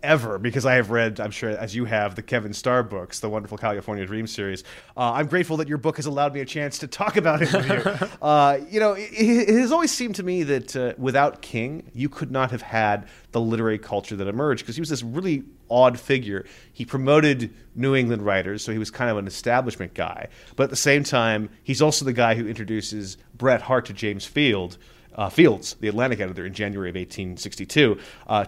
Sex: male